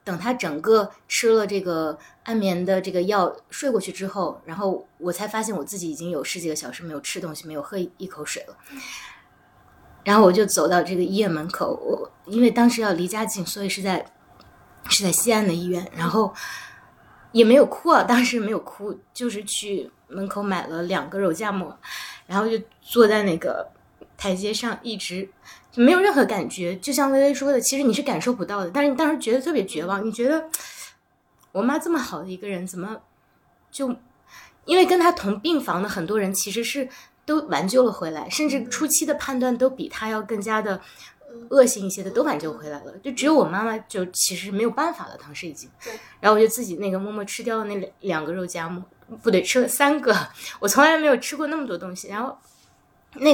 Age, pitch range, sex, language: 20-39, 185-255 Hz, female, Chinese